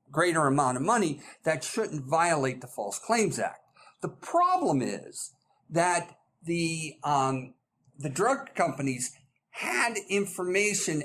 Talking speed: 120 wpm